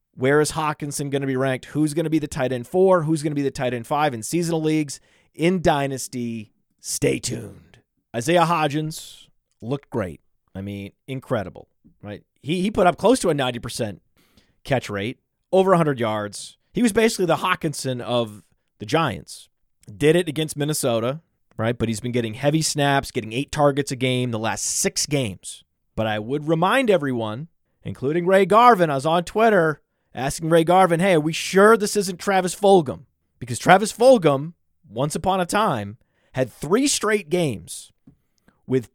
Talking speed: 175 wpm